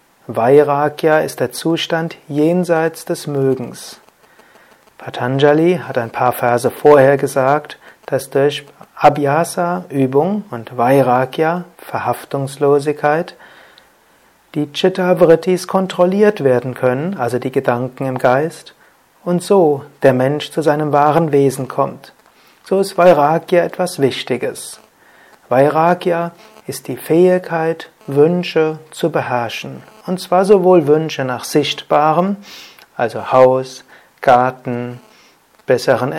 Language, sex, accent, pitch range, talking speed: German, male, German, 130-165 Hz, 105 wpm